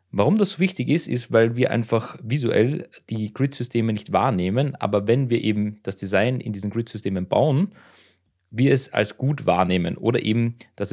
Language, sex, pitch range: German, male, 100-125 Hz